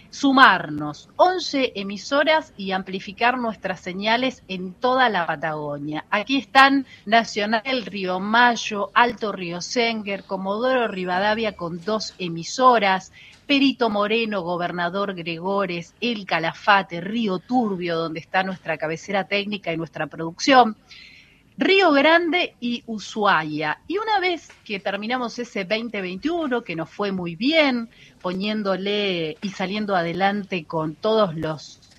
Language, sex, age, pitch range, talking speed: Spanish, female, 40-59, 185-250 Hz, 120 wpm